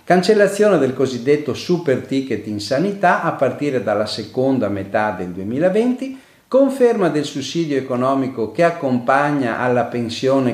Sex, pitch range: male, 115-170 Hz